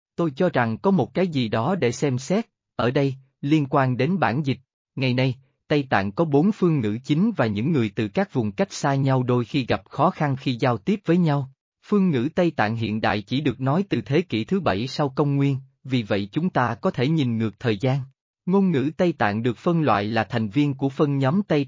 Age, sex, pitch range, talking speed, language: 20-39, male, 115-155 Hz, 240 wpm, Vietnamese